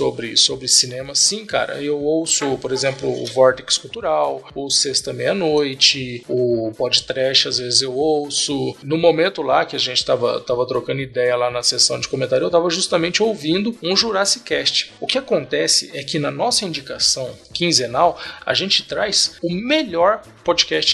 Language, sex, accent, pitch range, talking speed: Portuguese, male, Brazilian, 130-185 Hz, 170 wpm